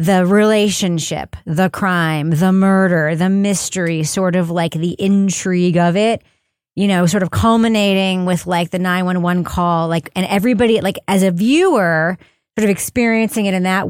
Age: 30-49